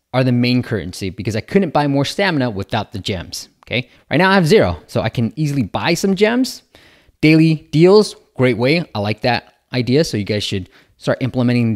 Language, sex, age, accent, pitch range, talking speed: English, male, 20-39, American, 110-180 Hz, 205 wpm